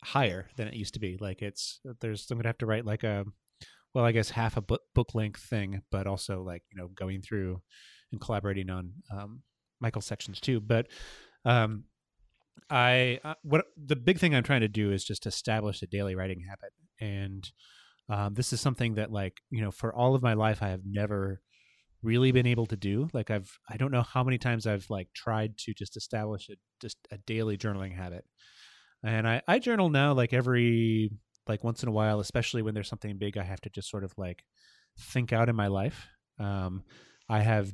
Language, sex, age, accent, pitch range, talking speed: English, male, 30-49, American, 100-120 Hz, 210 wpm